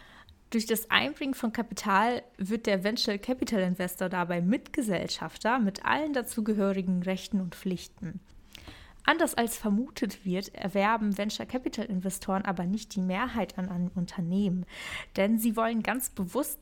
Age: 20-39